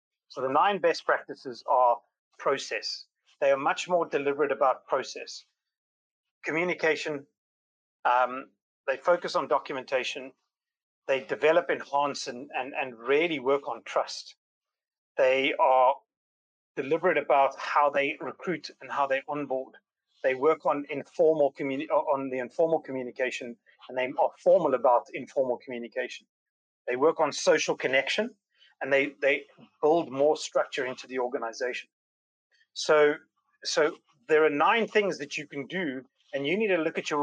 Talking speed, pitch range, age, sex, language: 140 wpm, 135-180 Hz, 30-49, male, Croatian